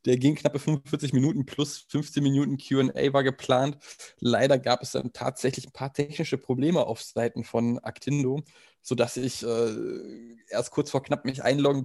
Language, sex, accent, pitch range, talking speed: German, male, German, 125-145 Hz, 165 wpm